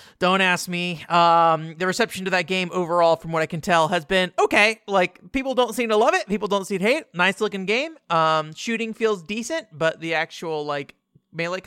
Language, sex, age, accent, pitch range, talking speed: English, male, 30-49, American, 155-205 Hz, 215 wpm